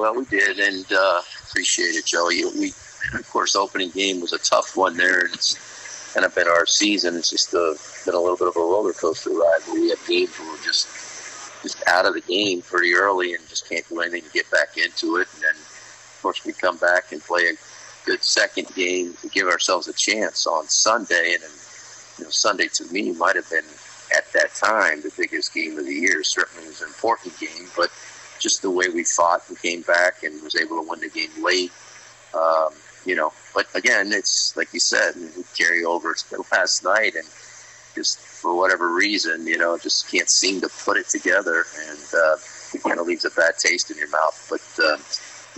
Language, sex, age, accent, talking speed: English, male, 50-69, American, 220 wpm